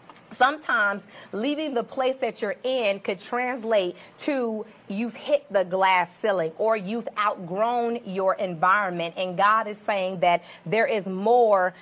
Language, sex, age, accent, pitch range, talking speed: English, female, 30-49, American, 190-240 Hz, 140 wpm